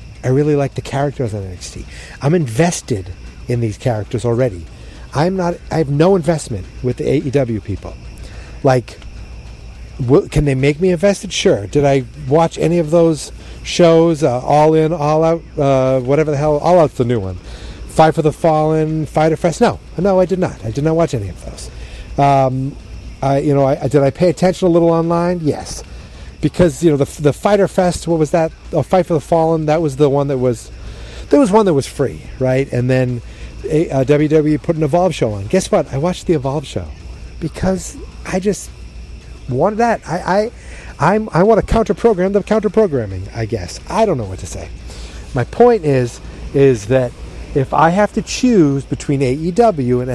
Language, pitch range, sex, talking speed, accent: English, 120-170 Hz, male, 190 wpm, American